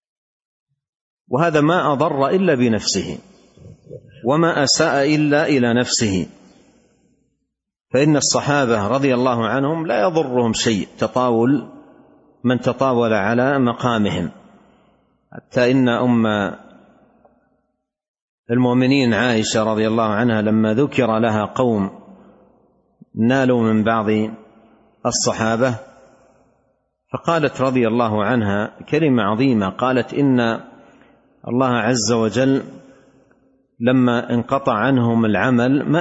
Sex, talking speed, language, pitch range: male, 90 wpm, Arabic, 115-140 Hz